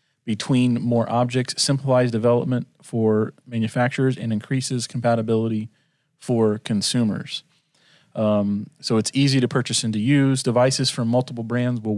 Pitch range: 110-130 Hz